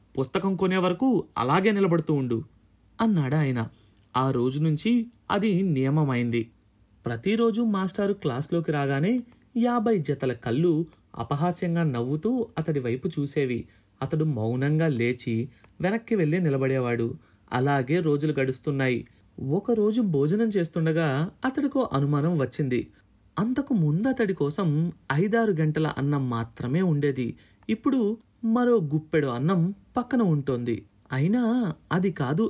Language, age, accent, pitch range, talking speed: Telugu, 30-49, native, 125-195 Hz, 100 wpm